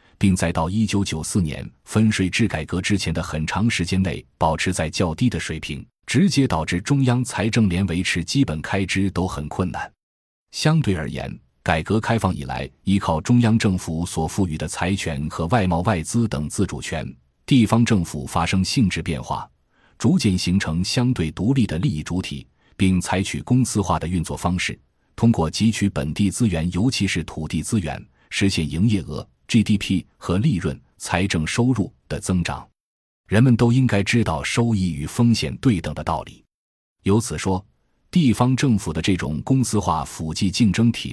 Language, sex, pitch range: Chinese, male, 80-110 Hz